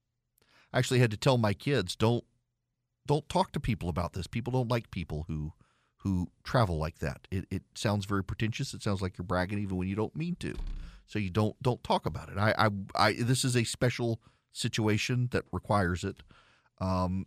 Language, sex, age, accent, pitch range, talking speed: English, male, 40-59, American, 95-130 Hz, 200 wpm